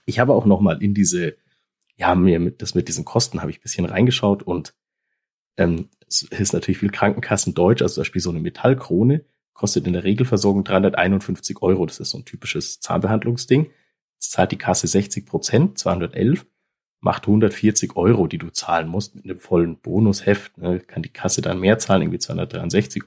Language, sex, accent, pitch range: German, male, German, 95-125 Hz